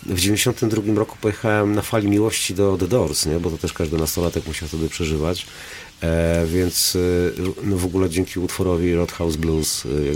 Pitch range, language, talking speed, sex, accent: 85-110 Hz, Polish, 195 wpm, male, native